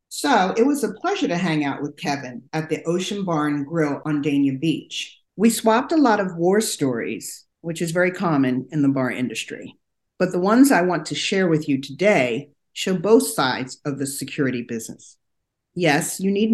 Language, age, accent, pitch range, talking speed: English, 50-69, American, 150-215 Hz, 190 wpm